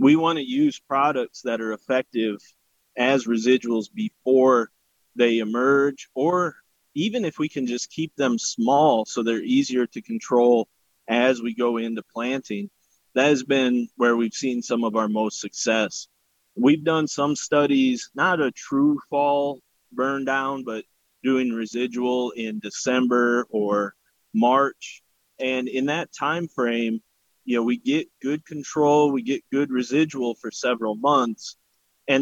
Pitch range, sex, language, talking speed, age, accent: 120-145 Hz, male, English, 145 wpm, 30-49, American